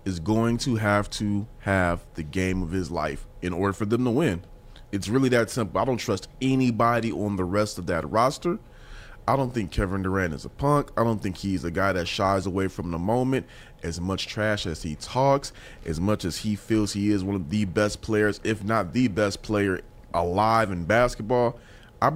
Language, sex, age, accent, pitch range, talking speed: English, male, 30-49, American, 100-130 Hz, 210 wpm